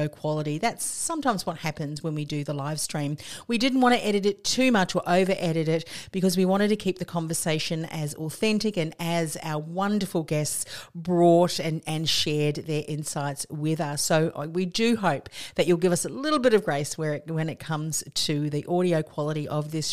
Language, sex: English, female